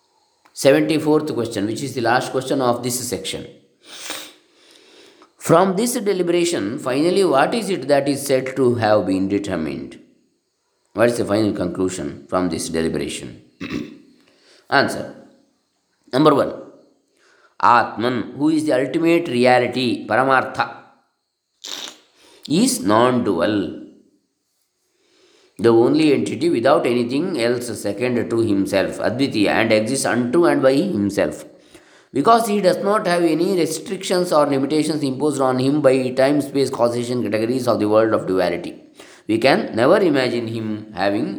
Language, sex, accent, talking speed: Kannada, male, native, 130 wpm